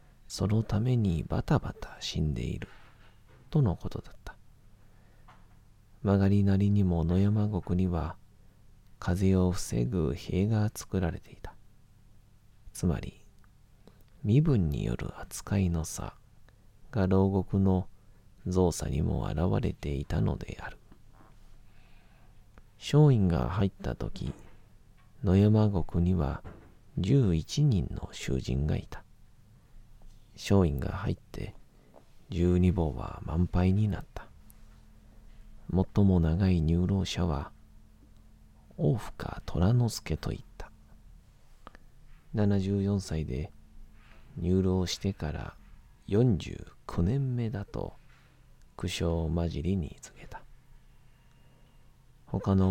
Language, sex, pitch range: Japanese, male, 85-105 Hz